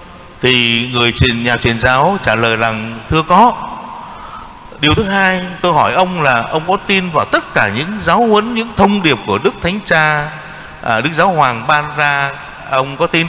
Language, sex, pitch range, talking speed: Vietnamese, male, 125-175 Hz, 185 wpm